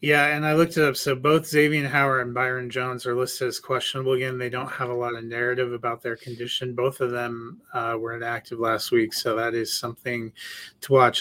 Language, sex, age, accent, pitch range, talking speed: English, male, 30-49, American, 125-160 Hz, 225 wpm